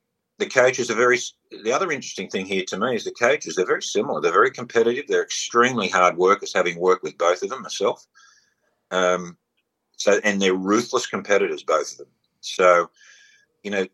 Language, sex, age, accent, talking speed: English, male, 50-69, Australian, 190 wpm